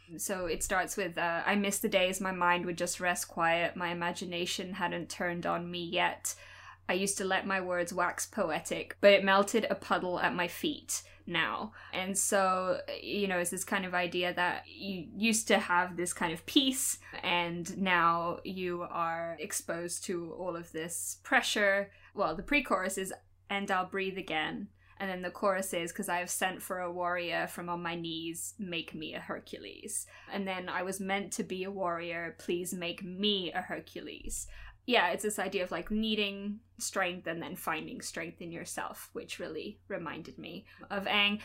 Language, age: English, 10-29